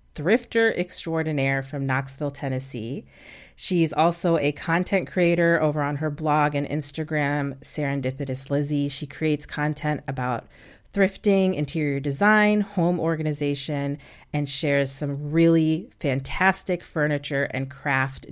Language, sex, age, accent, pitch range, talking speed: English, female, 30-49, American, 140-170 Hz, 115 wpm